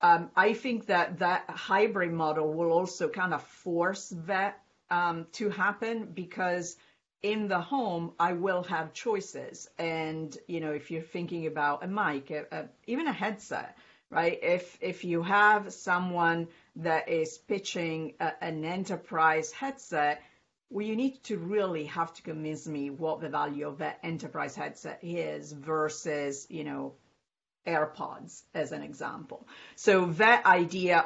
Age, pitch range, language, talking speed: 50-69, 155-190 Hz, English, 150 wpm